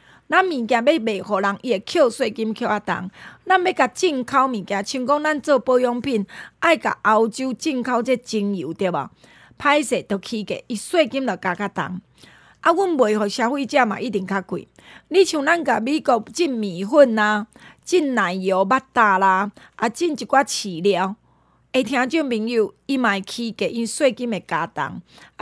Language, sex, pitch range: Chinese, female, 210-290 Hz